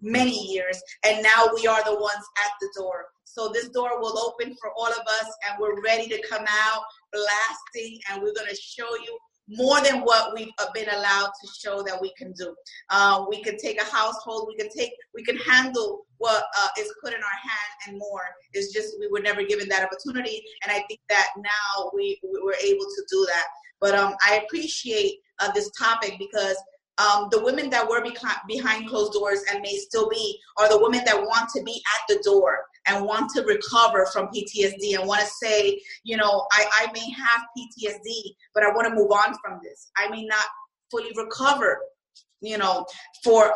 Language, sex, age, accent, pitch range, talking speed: English, female, 30-49, American, 205-255 Hz, 205 wpm